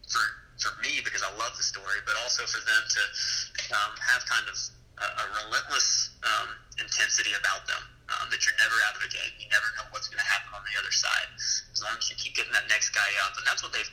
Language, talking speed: English, 245 wpm